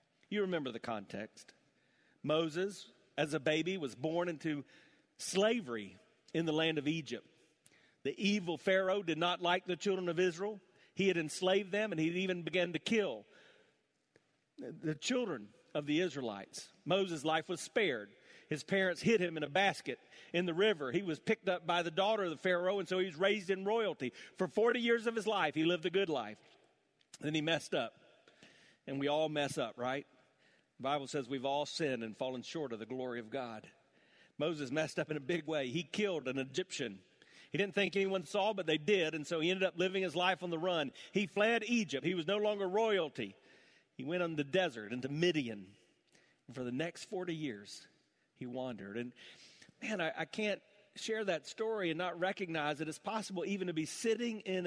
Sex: male